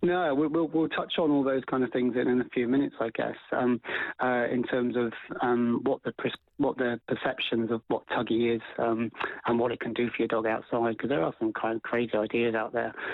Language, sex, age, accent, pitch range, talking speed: English, male, 30-49, British, 115-130 Hz, 240 wpm